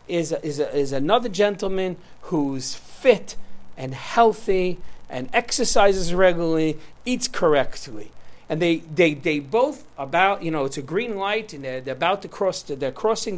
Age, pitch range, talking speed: 50-69, 150-220 Hz, 165 wpm